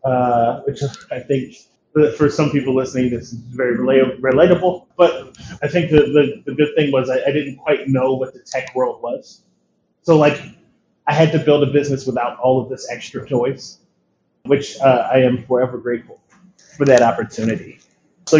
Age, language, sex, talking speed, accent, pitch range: 30-49, English, male, 185 wpm, American, 125-150 Hz